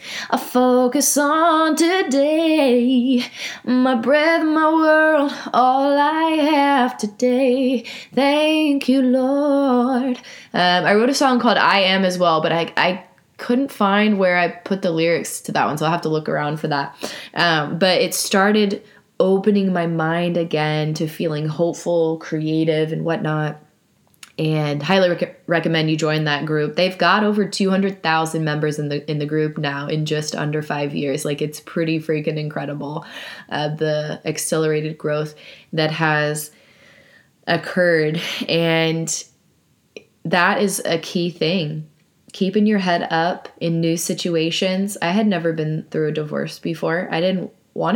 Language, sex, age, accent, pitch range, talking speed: English, female, 20-39, American, 155-235 Hz, 150 wpm